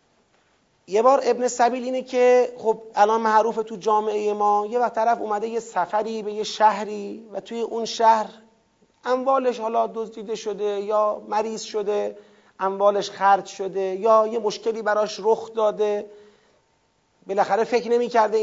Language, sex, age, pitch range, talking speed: Persian, male, 40-59, 200-230 Hz, 145 wpm